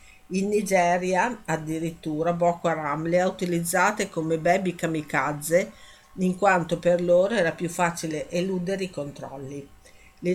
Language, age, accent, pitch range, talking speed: Italian, 50-69, native, 160-185 Hz, 130 wpm